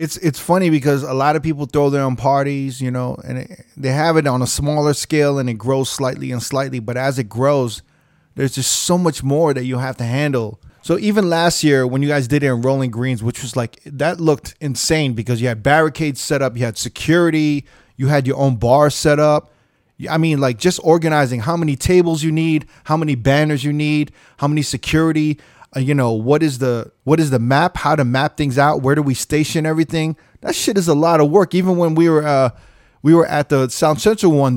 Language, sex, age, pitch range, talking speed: English, male, 20-39, 130-160 Hz, 230 wpm